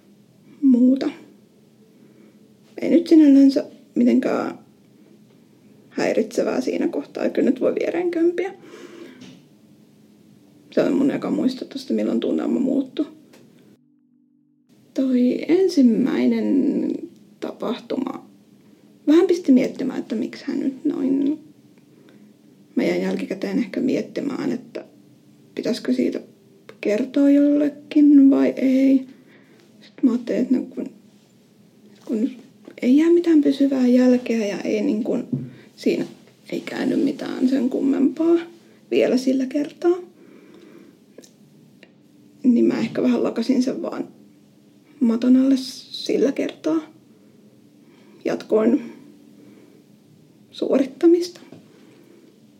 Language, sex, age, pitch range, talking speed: Finnish, female, 30-49, 260-295 Hz, 90 wpm